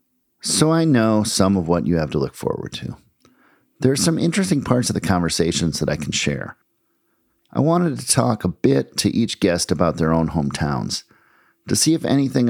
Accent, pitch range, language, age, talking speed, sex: American, 85-120 Hz, English, 50-69, 195 wpm, male